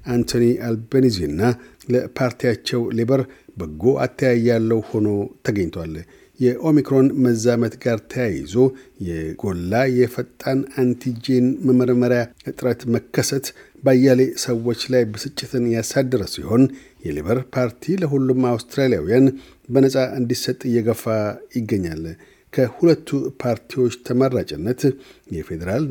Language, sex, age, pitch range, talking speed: Amharic, male, 60-79, 115-130 Hz, 80 wpm